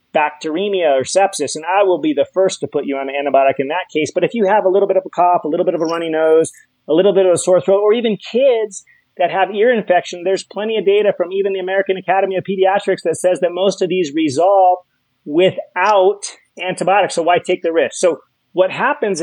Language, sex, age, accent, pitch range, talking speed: English, male, 30-49, American, 150-195 Hz, 240 wpm